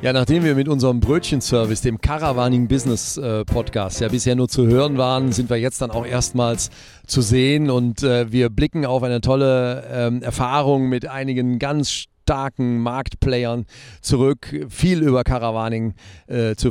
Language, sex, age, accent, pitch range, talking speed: German, male, 40-59, German, 115-130 Hz, 160 wpm